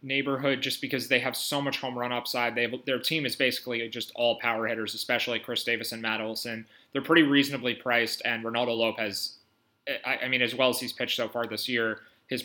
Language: English